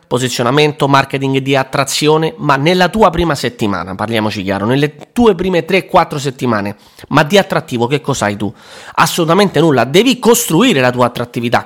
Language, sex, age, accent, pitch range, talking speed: Italian, male, 30-49, native, 130-195 Hz, 155 wpm